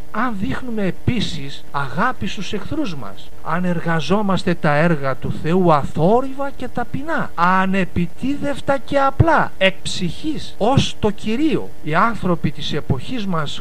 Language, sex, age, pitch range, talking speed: Greek, male, 50-69, 155-210 Hz, 130 wpm